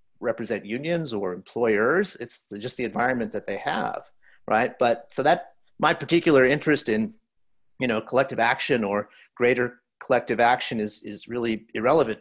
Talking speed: 150 wpm